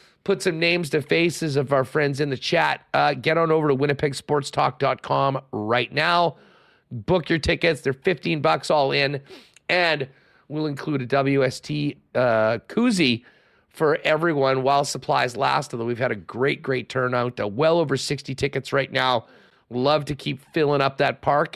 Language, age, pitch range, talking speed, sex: English, 40-59, 125-155 Hz, 165 wpm, male